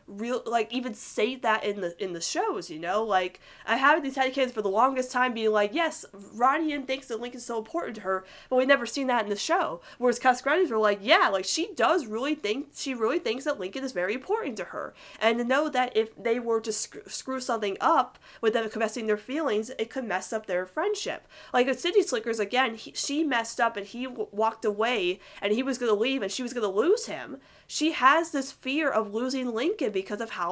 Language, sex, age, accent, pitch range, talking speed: English, female, 20-39, American, 205-265 Hz, 240 wpm